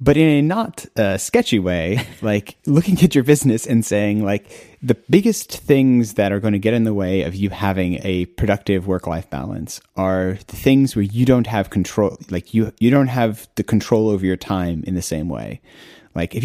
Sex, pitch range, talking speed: male, 95-120 Hz, 210 wpm